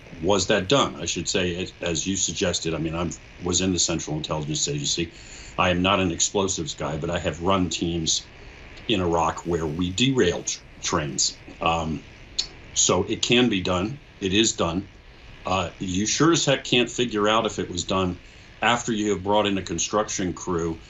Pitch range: 85-105 Hz